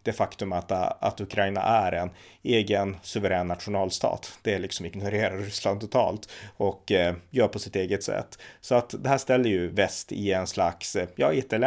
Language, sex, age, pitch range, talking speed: Swedish, male, 30-49, 95-110 Hz, 170 wpm